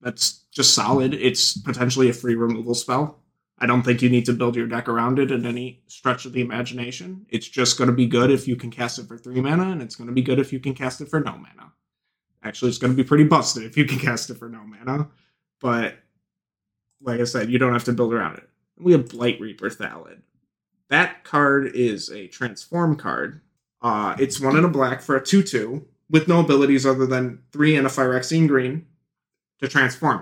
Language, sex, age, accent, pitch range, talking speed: English, male, 30-49, American, 120-150 Hz, 220 wpm